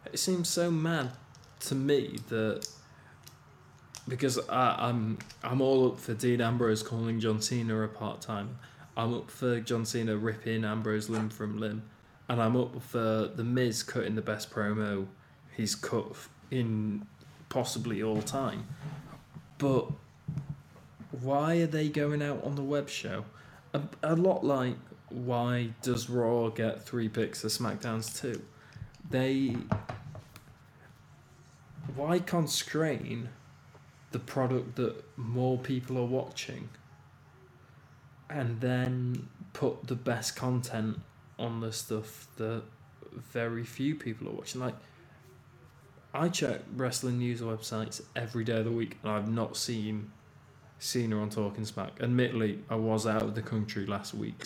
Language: English